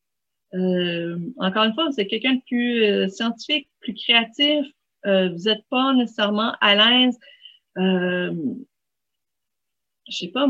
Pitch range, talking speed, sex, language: 190-235 Hz, 135 wpm, female, French